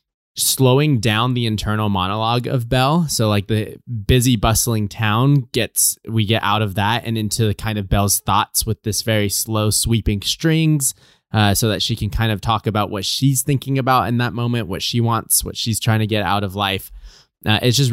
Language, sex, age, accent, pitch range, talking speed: English, male, 20-39, American, 105-130 Hz, 210 wpm